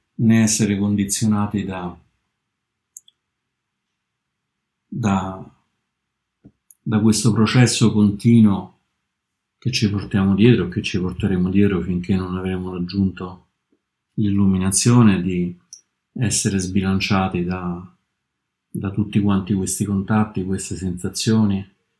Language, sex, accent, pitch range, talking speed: Italian, male, native, 95-110 Hz, 85 wpm